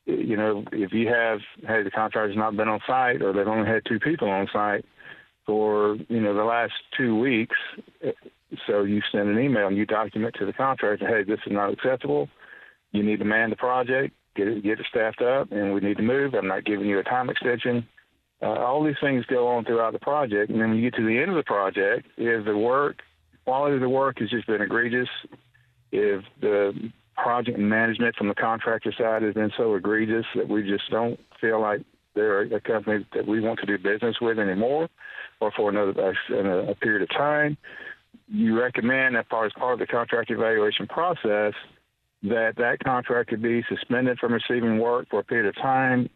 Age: 50-69